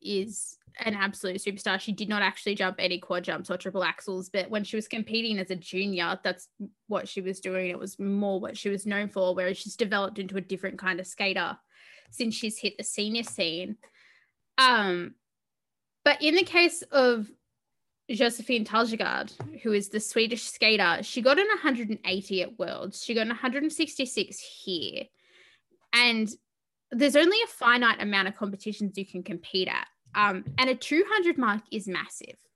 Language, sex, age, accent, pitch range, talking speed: English, female, 20-39, Australian, 195-245 Hz, 175 wpm